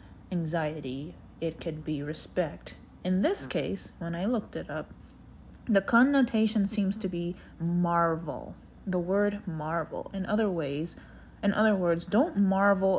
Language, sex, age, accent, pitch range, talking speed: English, female, 30-49, American, 155-200 Hz, 140 wpm